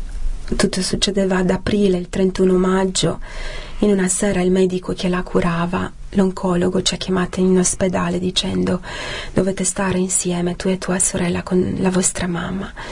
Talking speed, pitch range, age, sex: 155 wpm, 180-215 Hz, 40-59, female